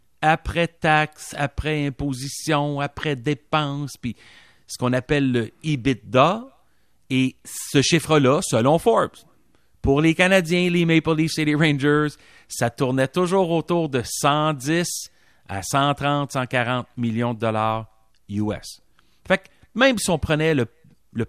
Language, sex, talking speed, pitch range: French, male, 130 wpm, 120-165 Hz